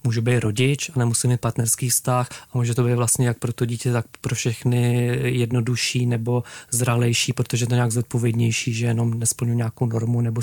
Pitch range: 115-125 Hz